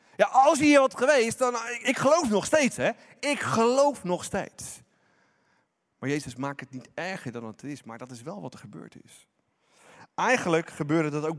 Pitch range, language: 155-235 Hz, Dutch